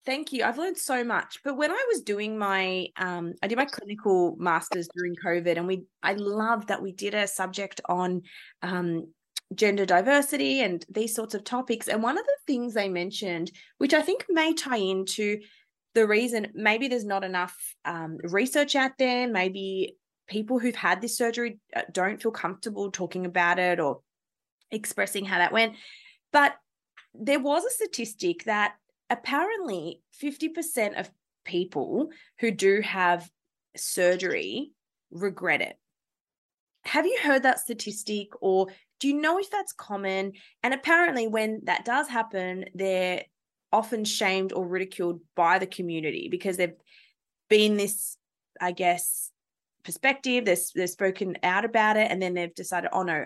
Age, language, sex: 20-39, English, female